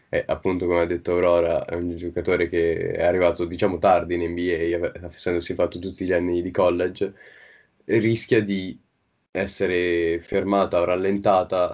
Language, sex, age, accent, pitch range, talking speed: Italian, male, 20-39, native, 85-100 Hz, 155 wpm